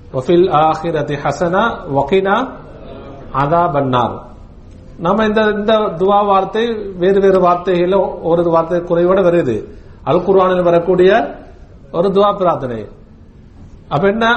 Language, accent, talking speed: English, Indian, 115 wpm